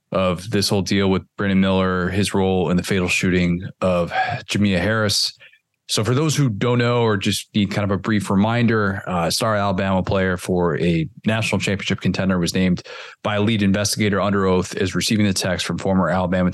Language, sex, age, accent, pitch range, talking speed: English, male, 20-39, American, 95-115 Hz, 200 wpm